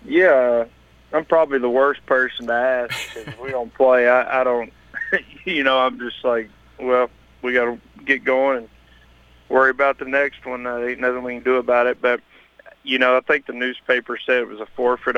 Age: 30-49